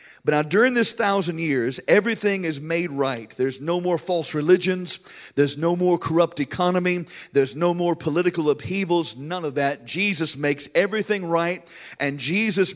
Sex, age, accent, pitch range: male, 50-69, American, 145-185 Hz